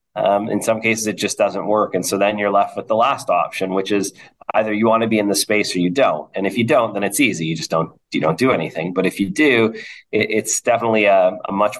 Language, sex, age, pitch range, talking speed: English, male, 30-49, 90-115 Hz, 275 wpm